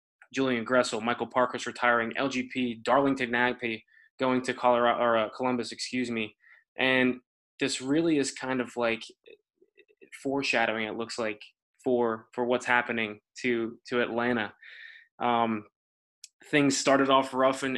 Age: 20-39